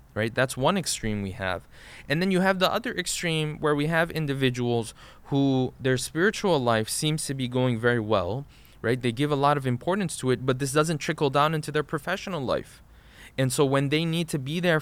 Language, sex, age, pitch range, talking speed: English, male, 20-39, 120-150 Hz, 215 wpm